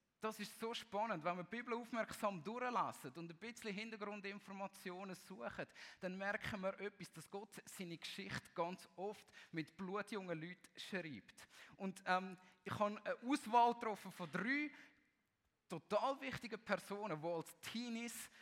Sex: male